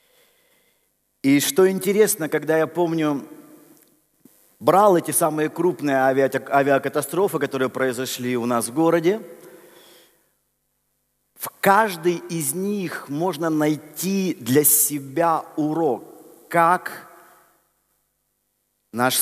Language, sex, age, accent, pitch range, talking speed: Russian, male, 50-69, native, 145-185 Hz, 85 wpm